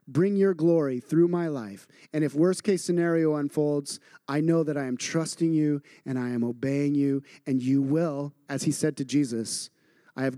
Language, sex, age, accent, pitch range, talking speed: English, male, 30-49, American, 155-220 Hz, 190 wpm